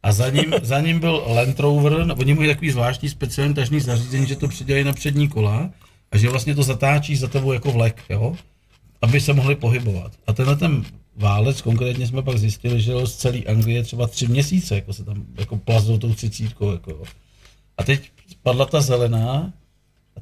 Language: Czech